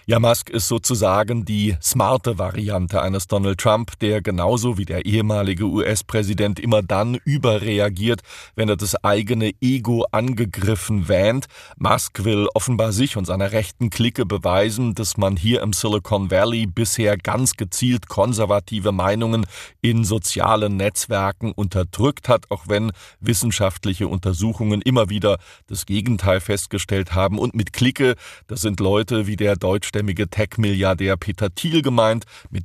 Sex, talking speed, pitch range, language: male, 140 wpm, 95-115 Hz, German